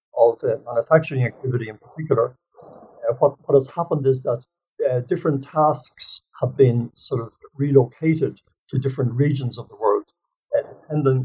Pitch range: 125-180 Hz